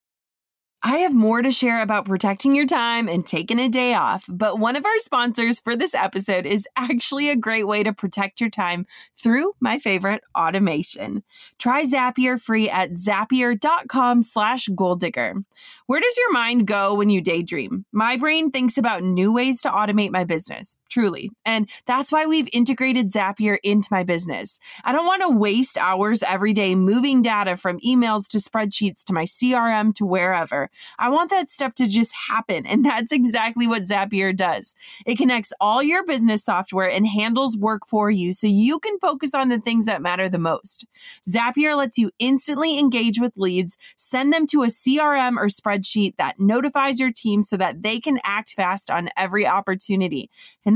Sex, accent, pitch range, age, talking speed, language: female, American, 200-255 Hz, 20-39, 180 wpm, English